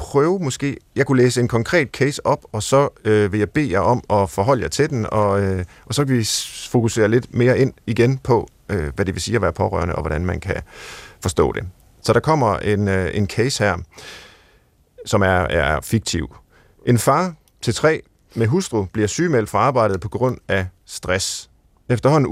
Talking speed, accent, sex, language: 200 wpm, native, male, Danish